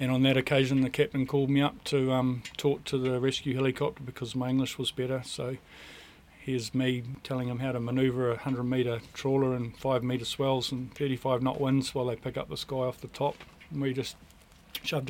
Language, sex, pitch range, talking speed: English, male, 125-135 Hz, 215 wpm